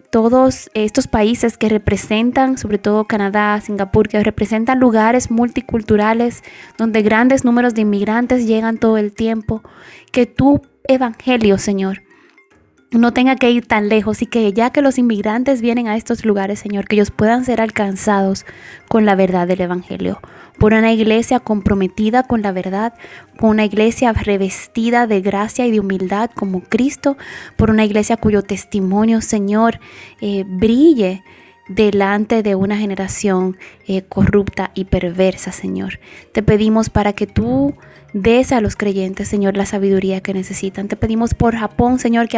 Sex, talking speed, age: female, 155 wpm, 10-29